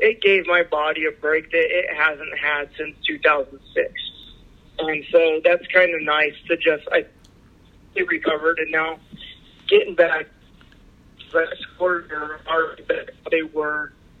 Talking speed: 145 wpm